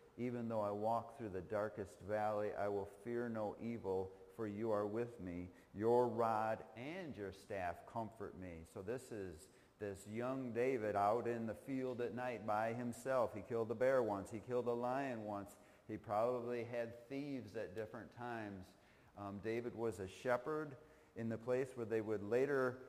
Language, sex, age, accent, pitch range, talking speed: English, male, 40-59, American, 100-125 Hz, 180 wpm